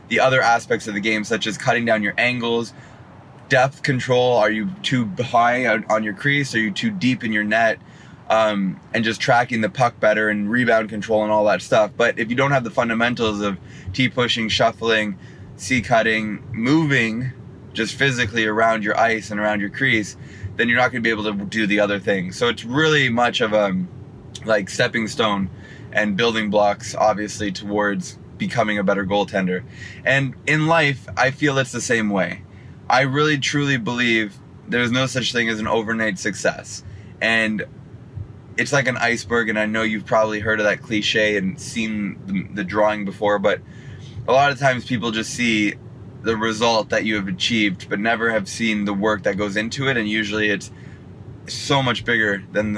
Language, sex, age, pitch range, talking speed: English, male, 20-39, 105-125 Hz, 190 wpm